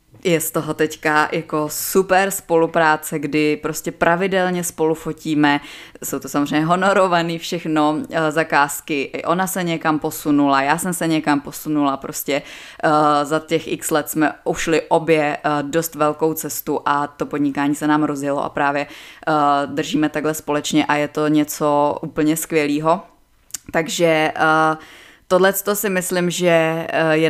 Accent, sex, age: native, female, 20-39